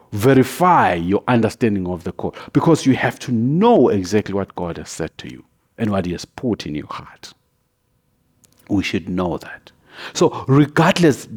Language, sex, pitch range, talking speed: English, male, 100-130 Hz, 170 wpm